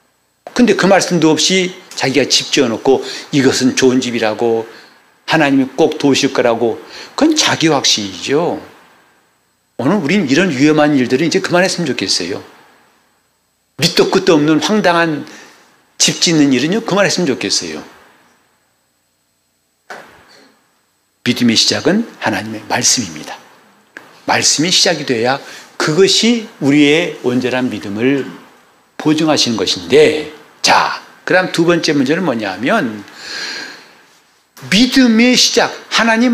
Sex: male